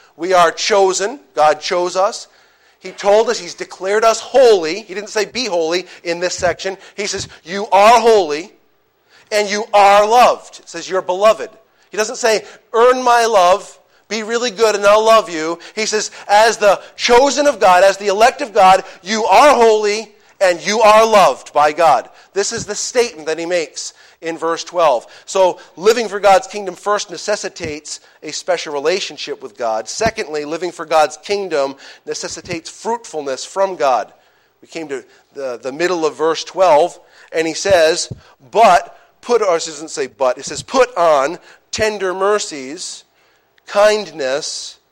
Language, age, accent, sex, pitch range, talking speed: English, 40-59, American, male, 165-215 Hz, 165 wpm